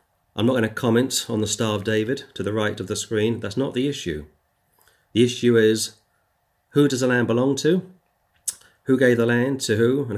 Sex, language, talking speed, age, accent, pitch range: male, English, 210 wpm, 40-59, British, 105-120 Hz